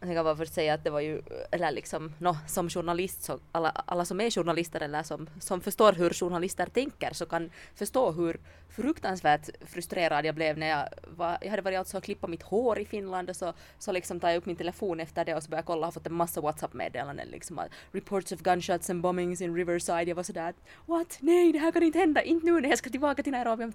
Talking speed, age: 240 wpm, 20-39